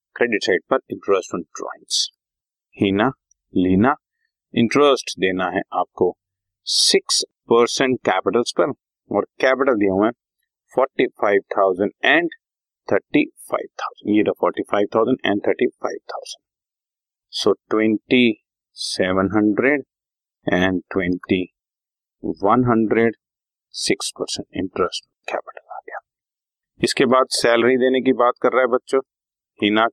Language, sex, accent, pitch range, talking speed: Hindi, male, native, 100-135 Hz, 105 wpm